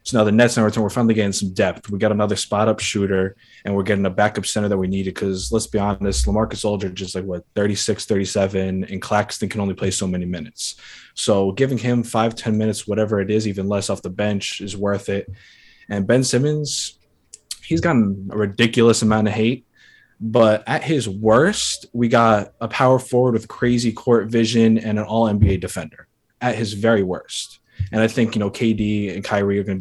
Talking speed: 210 wpm